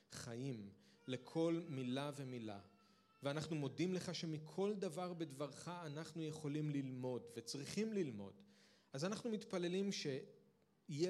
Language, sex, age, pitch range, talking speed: Hebrew, male, 40-59, 125-165 Hz, 105 wpm